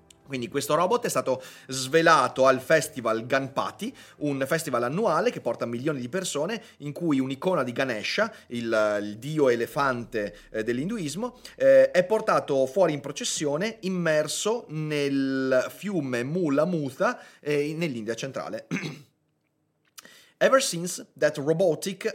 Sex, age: male, 30-49